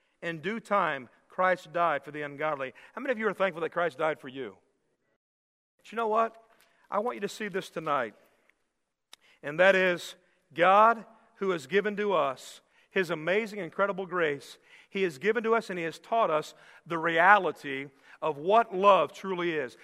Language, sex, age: English, male, 40-59